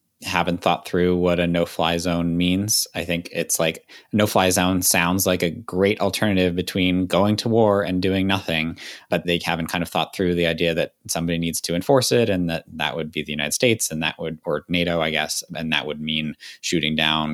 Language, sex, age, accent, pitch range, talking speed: English, male, 20-39, American, 80-95 Hz, 220 wpm